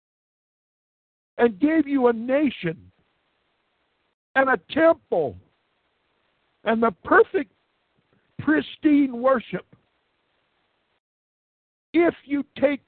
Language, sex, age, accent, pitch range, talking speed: English, male, 60-79, American, 145-235 Hz, 75 wpm